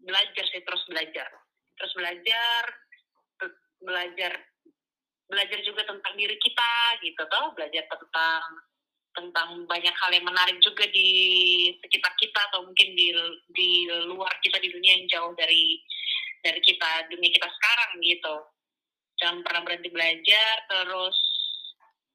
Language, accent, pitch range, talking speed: Indonesian, native, 180-275 Hz, 130 wpm